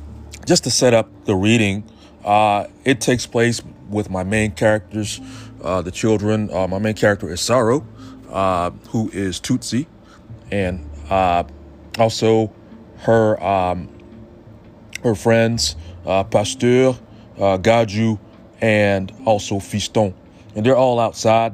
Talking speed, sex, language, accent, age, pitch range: 125 wpm, male, English, American, 30-49, 95-115 Hz